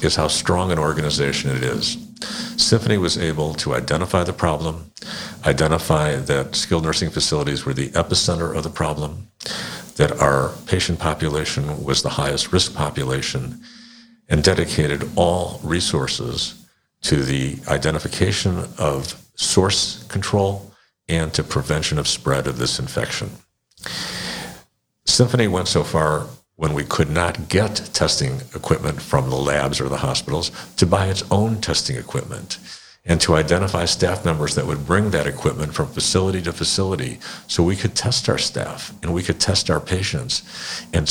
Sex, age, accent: male, 50-69, American